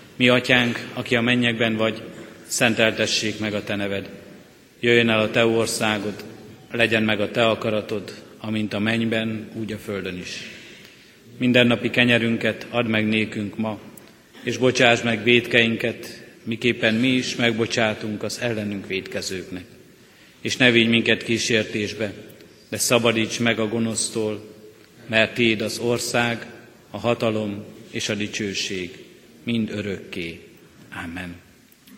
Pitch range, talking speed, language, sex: 105-120 Hz, 130 wpm, Hungarian, male